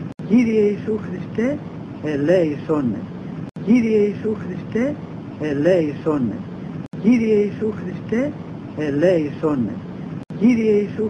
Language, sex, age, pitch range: English, male, 60-79, 155-220 Hz